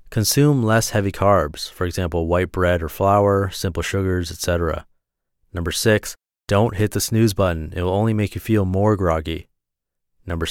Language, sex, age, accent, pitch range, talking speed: English, male, 30-49, American, 90-115 Hz, 165 wpm